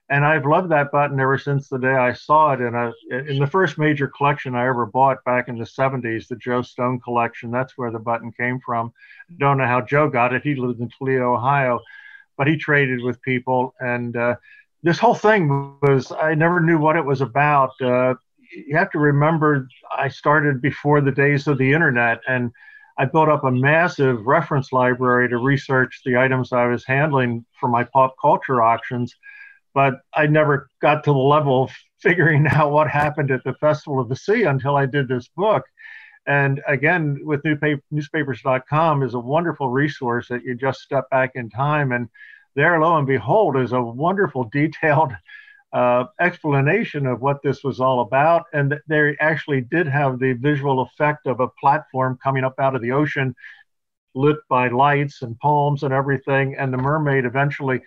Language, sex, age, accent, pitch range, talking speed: English, male, 50-69, American, 130-150 Hz, 185 wpm